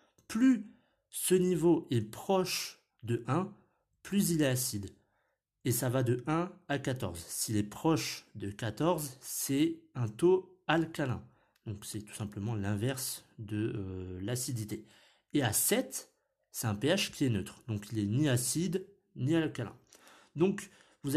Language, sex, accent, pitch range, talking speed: French, male, French, 115-170 Hz, 150 wpm